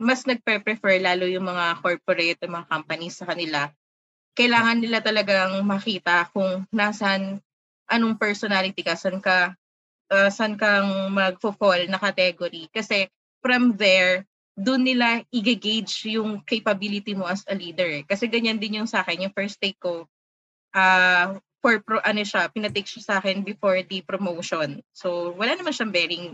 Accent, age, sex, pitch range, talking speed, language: native, 20-39, female, 180-220 Hz, 150 wpm, Filipino